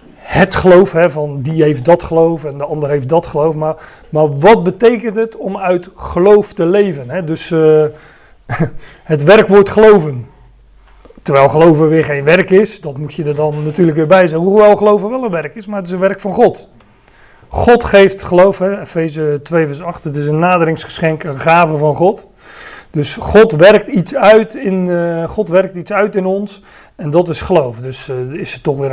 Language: Dutch